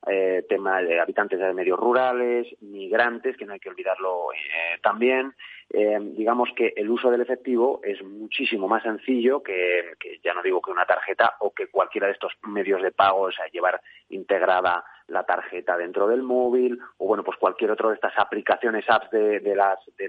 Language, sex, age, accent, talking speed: Spanish, male, 30-49, Spanish, 190 wpm